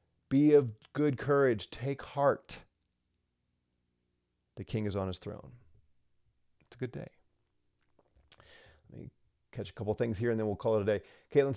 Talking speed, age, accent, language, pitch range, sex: 160 wpm, 40-59, American, English, 90-135 Hz, male